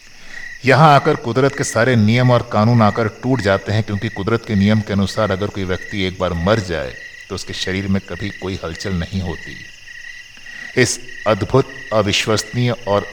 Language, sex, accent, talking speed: Hindi, male, native, 175 wpm